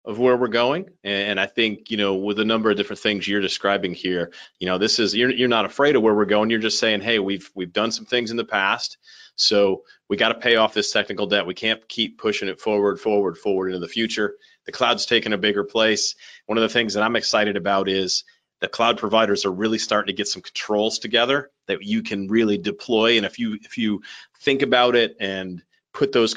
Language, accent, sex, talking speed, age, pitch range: English, American, male, 235 wpm, 30-49, 100-115 Hz